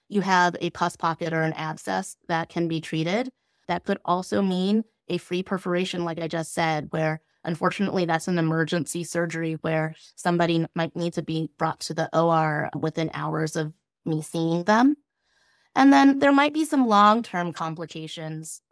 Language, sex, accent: English, female, American